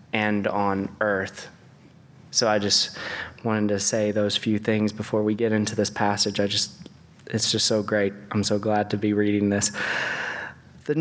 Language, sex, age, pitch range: English, male, 20-39, 110-140 Hz